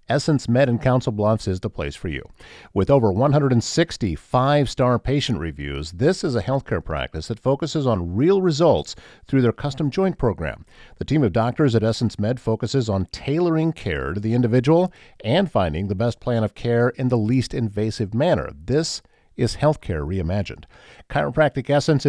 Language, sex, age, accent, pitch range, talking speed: English, male, 50-69, American, 100-145 Hz, 170 wpm